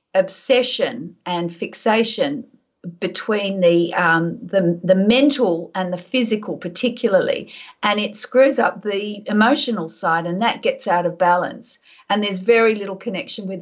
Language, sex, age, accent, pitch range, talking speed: English, female, 50-69, Australian, 185-240 Hz, 140 wpm